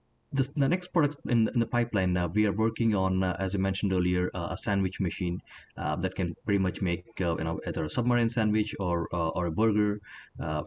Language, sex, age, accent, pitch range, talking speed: English, male, 30-49, Indian, 90-115 Hz, 220 wpm